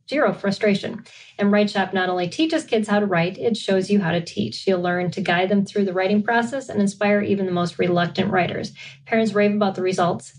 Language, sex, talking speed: English, female, 220 wpm